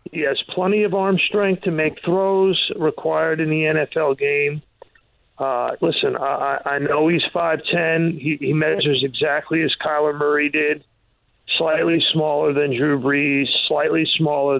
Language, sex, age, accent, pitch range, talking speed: English, male, 40-59, American, 145-170 Hz, 150 wpm